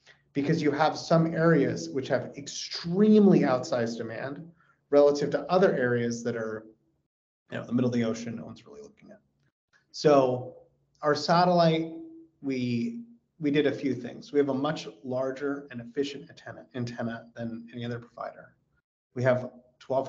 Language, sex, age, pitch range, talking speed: English, male, 30-49, 120-145 Hz, 160 wpm